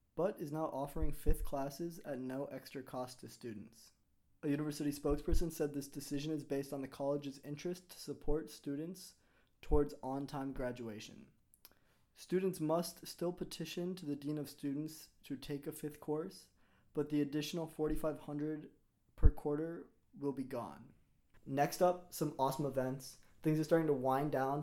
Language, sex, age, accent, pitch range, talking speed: English, male, 20-39, American, 130-155 Hz, 155 wpm